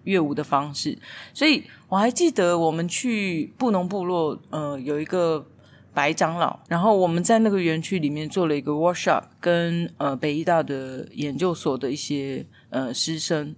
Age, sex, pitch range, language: 30-49, female, 150-205 Hz, Chinese